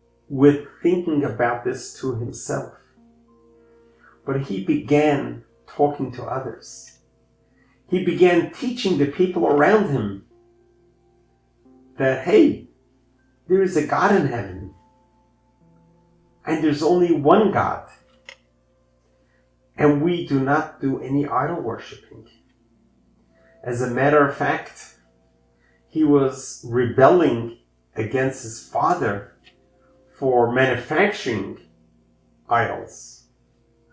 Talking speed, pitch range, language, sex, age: 95 wpm, 115-145 Hz, English, male, 50-69